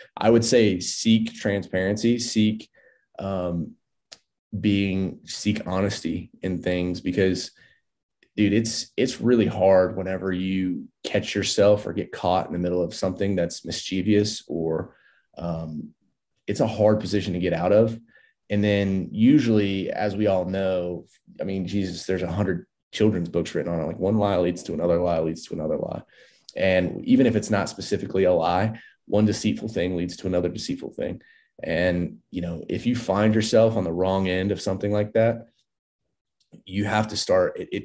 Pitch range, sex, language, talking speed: 90-105 Hz, male, English, 170 wpm